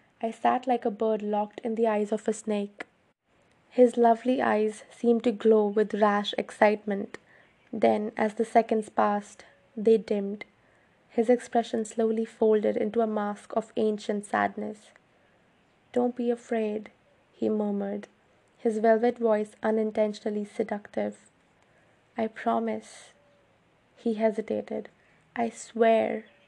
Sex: female